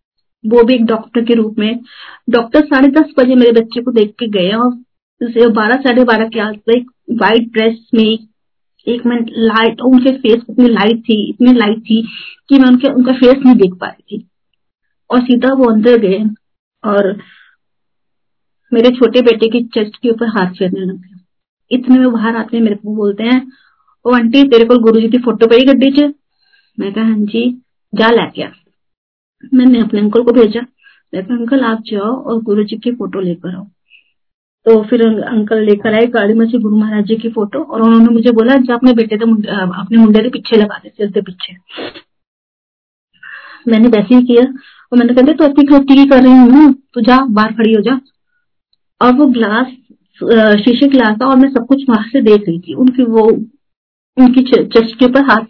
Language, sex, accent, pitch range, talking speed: Hindi, female, native, 220-255 Hz, 170 wpm